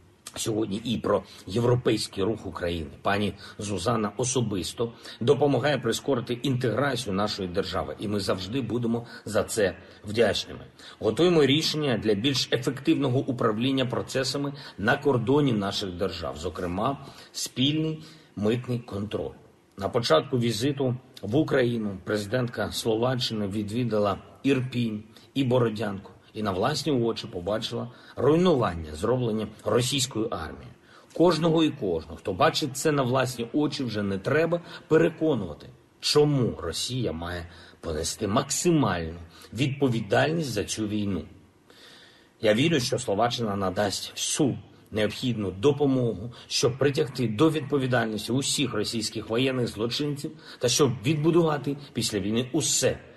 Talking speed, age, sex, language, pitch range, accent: 115 wpm, 50-69, male, Ukrainian, 105-140 Hz, native